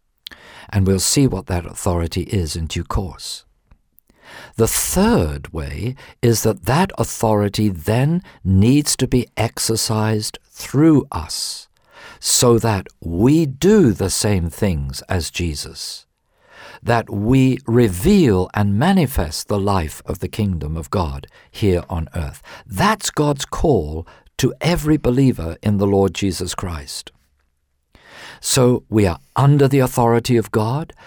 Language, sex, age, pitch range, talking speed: English, male, 50-69, 95-125 Hz, 130 wpm